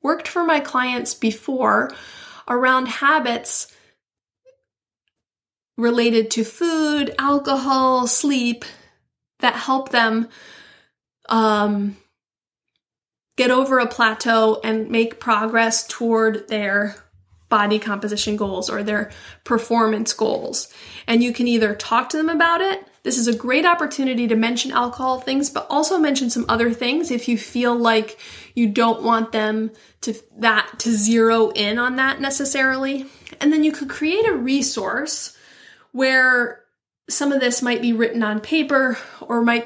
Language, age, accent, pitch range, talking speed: English, 30-49, American, 225-270 Hz, 135 wpm